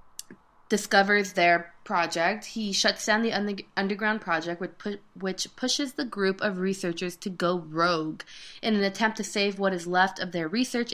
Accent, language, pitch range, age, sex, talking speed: American, English, 165-210 Hz, 20-39, female, 170 wpm